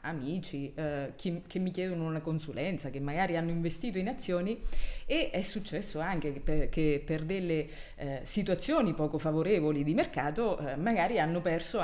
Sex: female